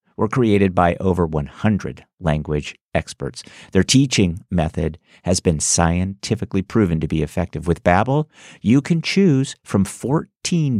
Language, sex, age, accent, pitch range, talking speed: English, male, 50-69, American, 90-130 Hz, 135 wpm